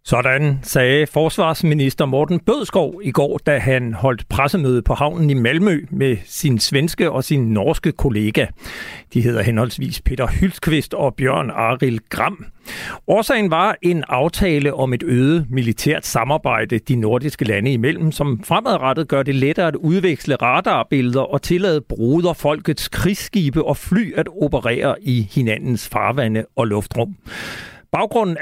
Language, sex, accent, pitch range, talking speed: Danish, male, native, 120-155 Hz, 140 wpm